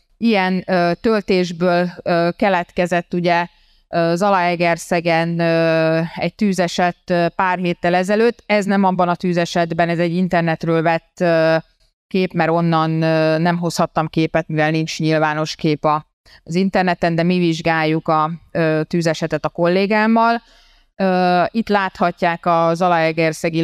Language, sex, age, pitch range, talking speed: Hungarian, female, 30-49, 165-190 Hz, 105 wpm